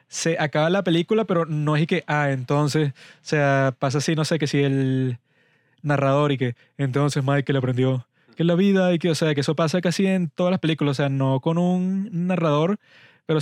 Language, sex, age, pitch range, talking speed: Spanish, male, 20-39, 150-185 Hz, 225 wpm